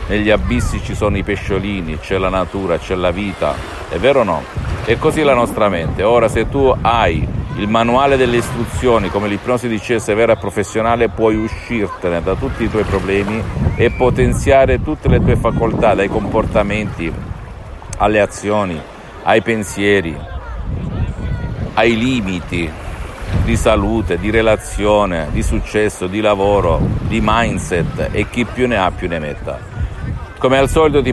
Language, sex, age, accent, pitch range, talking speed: Italian, male, 50-69, native, 95-115 Hz, 150 wpm